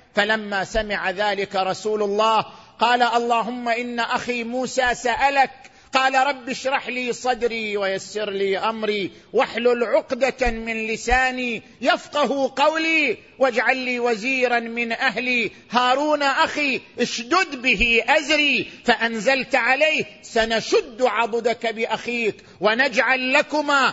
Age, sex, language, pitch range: 50-69, male, Arabic, 205-265 Hz